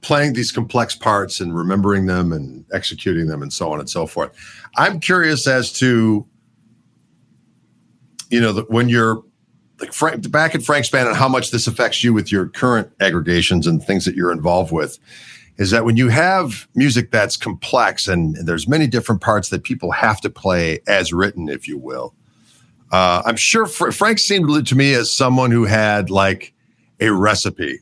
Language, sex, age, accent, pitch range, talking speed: English, male, 50-69, American, 100-135 Hz, 180 wpm